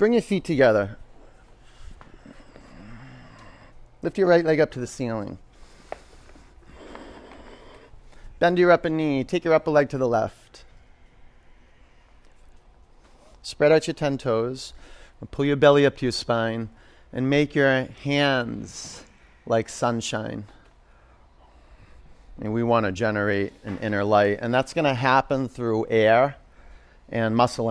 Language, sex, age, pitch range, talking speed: English, male, 30-49, 100-140 Hz, 125 wpm